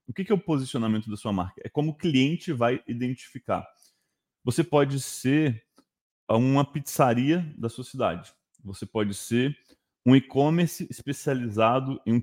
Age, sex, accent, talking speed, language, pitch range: 20-39, male, Brazilian, 145 wpm, Portuguese, 115-140 Hz